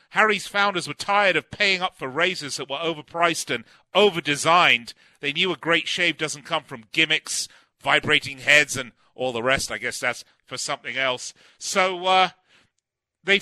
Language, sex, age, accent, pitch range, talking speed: English, male, 40-59, British, 145-180 Hz, 170 wpm